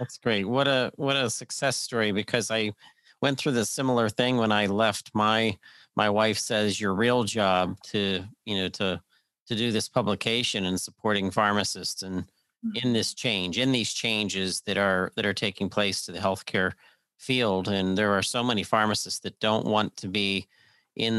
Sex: male